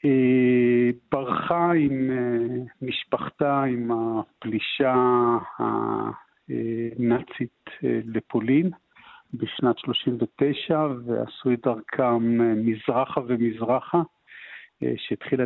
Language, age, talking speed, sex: Hebrew, 50-69, 60 wpm, male